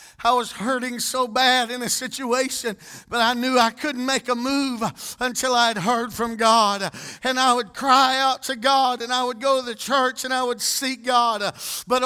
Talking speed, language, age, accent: 205 wpm, English, 50-69, American